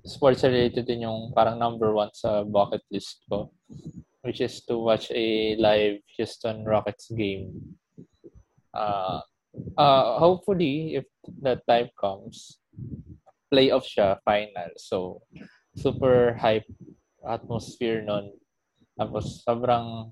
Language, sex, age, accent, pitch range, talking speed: Filipino, male, 20-39, native, 110-125 Hz, 110 wpm